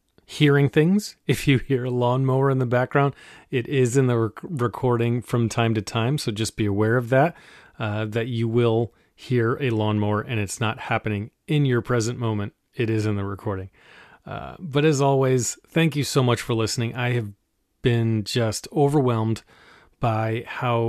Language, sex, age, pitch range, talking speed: English, male, 30-49, 110-130 Hz, 180 wpm